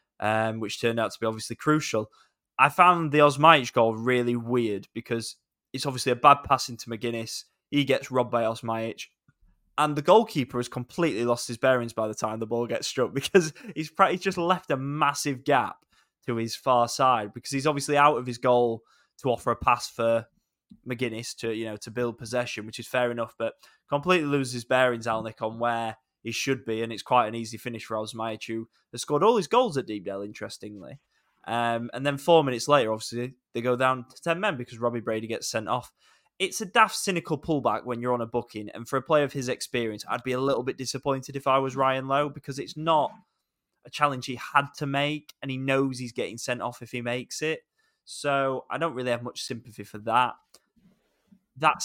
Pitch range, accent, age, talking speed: 115-145 Hz, British, 10-29, 210 wpm